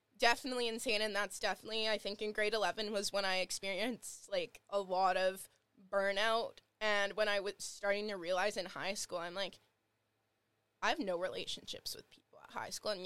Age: 10-29